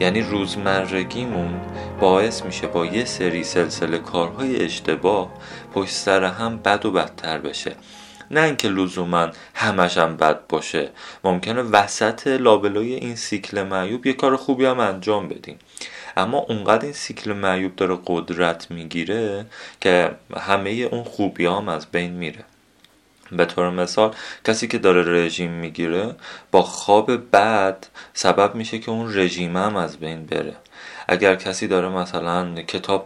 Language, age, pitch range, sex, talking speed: Persian, 30-49, 85-110 Hz, male, 140 wpm